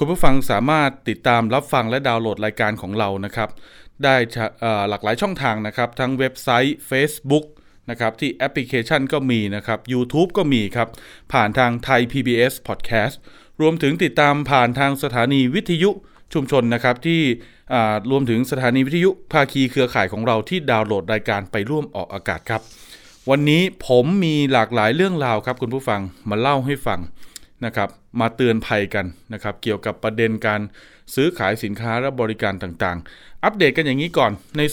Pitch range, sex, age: 110-140 Hz, male, 20-39